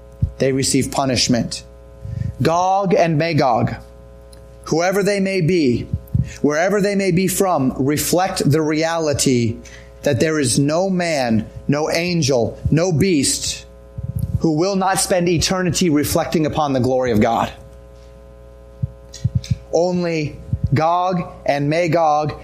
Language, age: English, 30-49